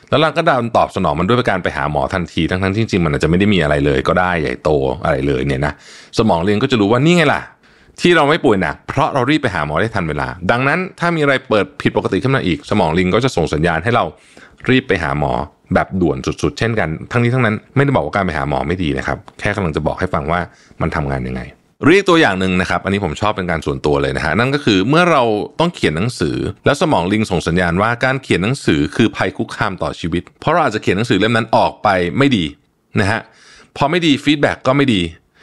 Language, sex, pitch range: Thai, male, 90-130 Hz